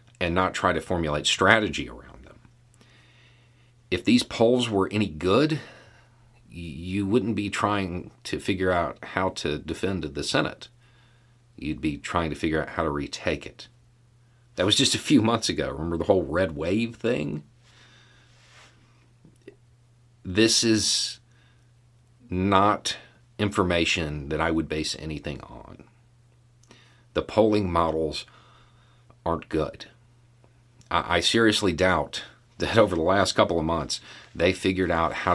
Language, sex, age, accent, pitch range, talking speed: English, male, 50-69, American, 85-120 Hz, 130 wpm